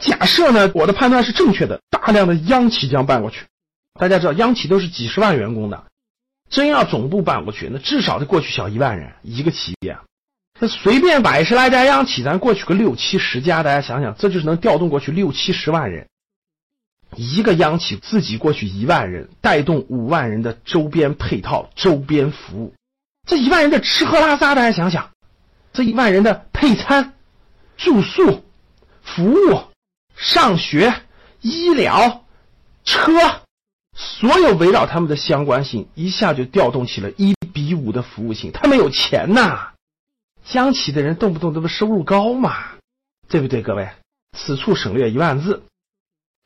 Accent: native